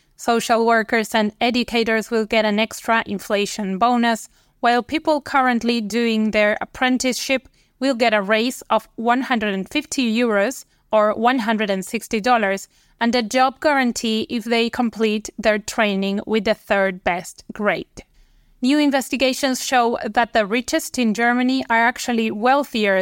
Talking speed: 130 wpm